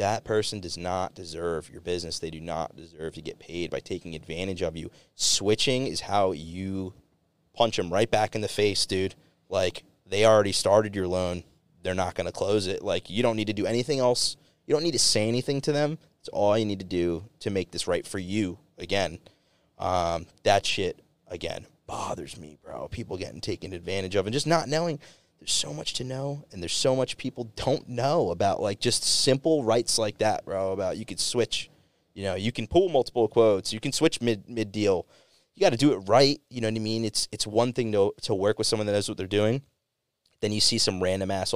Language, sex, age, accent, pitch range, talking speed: English, male, 30-49, American, 90-115 Hz, 225 wpm